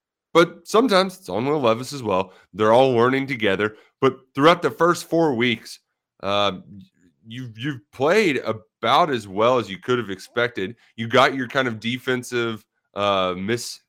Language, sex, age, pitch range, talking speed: English, male, 30-49, 100-130 Hz, 165 wpm